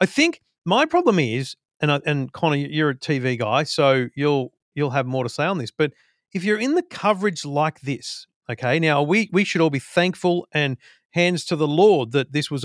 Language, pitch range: English, 140-185 Hz